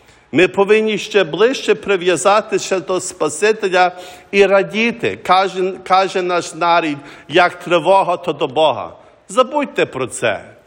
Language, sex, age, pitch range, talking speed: English, male, 50-69, 155-200 Hz, 120 wpm